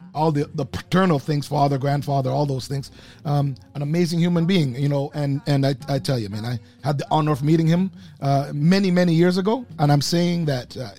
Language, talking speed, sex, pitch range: English, 225 wpm, male, 125-155 Hz